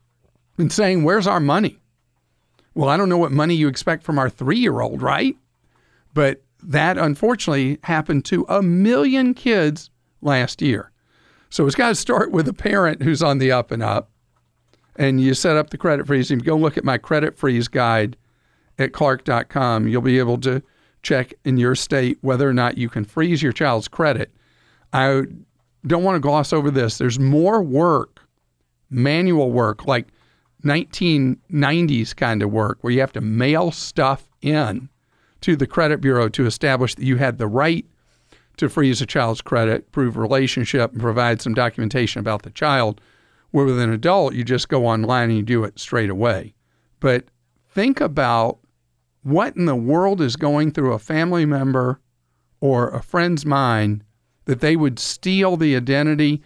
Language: English